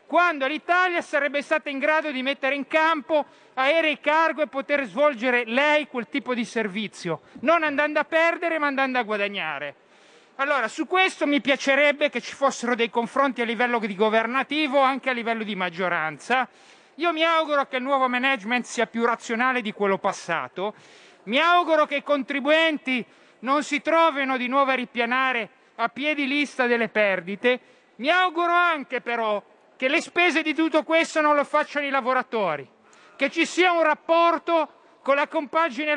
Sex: male